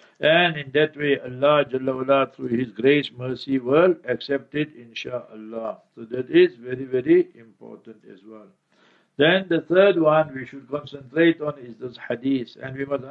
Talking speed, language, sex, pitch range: 165 wpm, English, male, 130-160 Hz